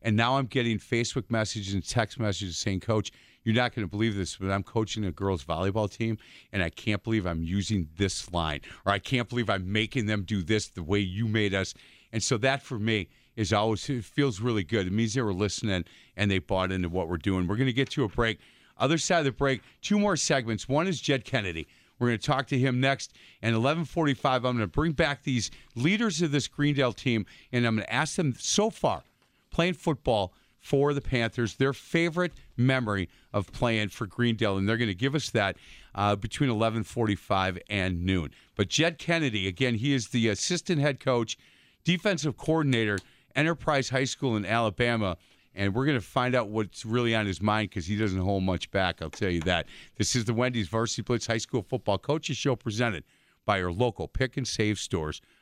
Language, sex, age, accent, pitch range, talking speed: English, male, 50-69, American, 100-135 Hz, 210 wpm